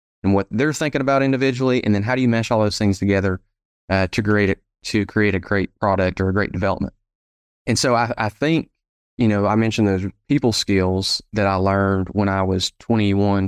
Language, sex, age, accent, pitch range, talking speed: English, male, 20-39, American, 95-115 Hz, 205 wpm